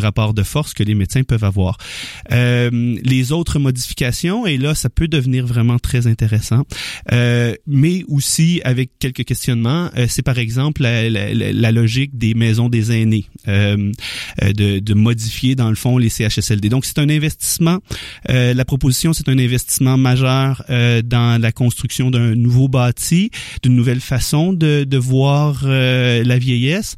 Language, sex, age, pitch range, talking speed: French, male, 30-49, 115-145 Hz, 165 wpm